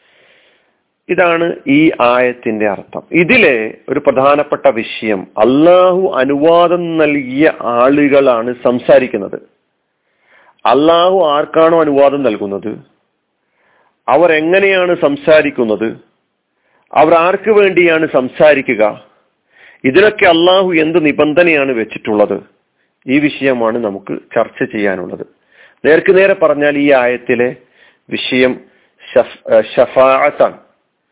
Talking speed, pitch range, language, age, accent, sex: 75 wpm, 130-175 Hz, Malayalam, 40-59, native, male